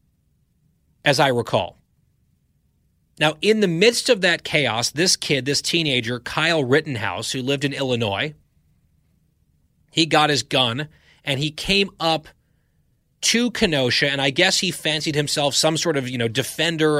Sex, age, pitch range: male, 30-49, 130-165 Hz